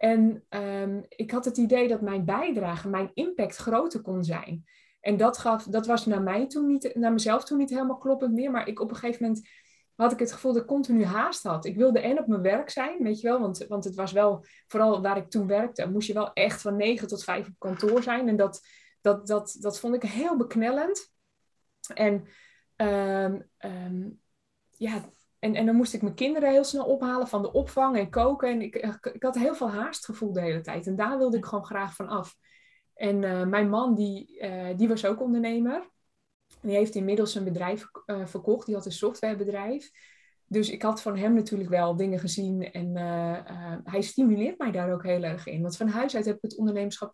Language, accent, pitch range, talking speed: Dutch, Dutch, 200-250 Hz, 220 wpm